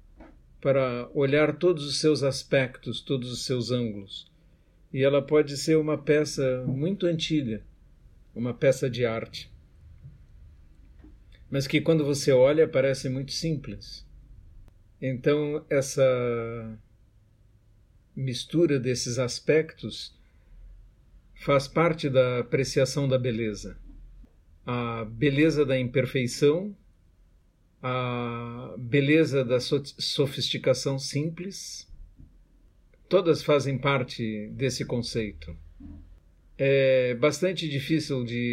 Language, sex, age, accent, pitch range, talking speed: Portuguese, male, 50-69, Brazilian, 105-140 Hz, 90 wpm